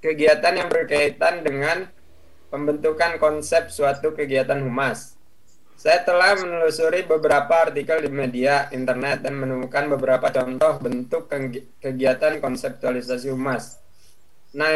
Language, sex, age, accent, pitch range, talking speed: Indonesian, male, 20-39, native, 140-175 Hz, 105 wpm